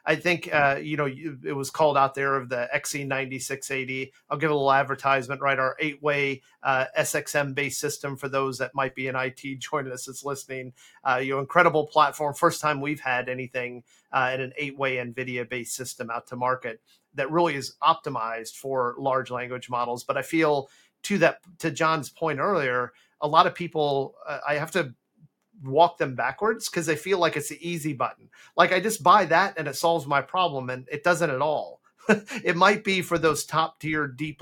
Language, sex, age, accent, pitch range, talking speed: English, male, 40-59, American, 135-165 Hz, 195 wpm